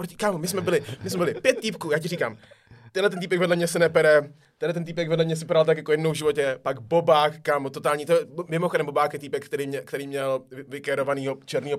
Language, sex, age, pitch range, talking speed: Czech, male, 20-39, 135-170 Hz, 230 wpm